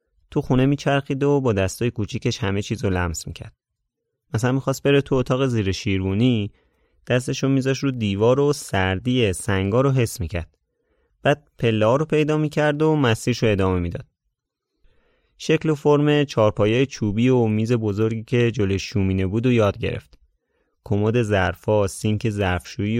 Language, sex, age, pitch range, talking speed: Persian, male, 30-49, 100-135 Hz, 150 wpm